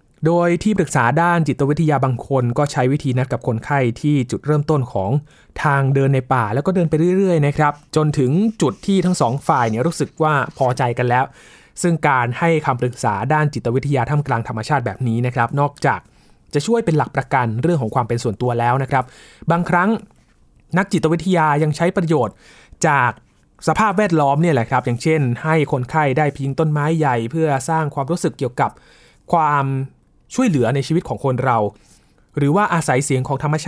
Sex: male